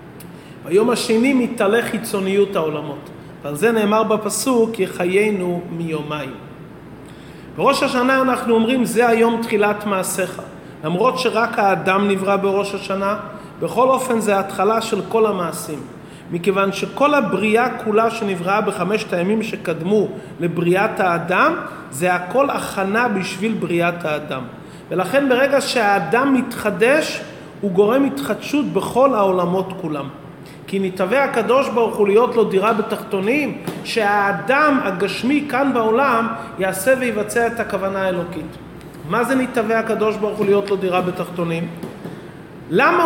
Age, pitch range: 30-49, 190-230 Hz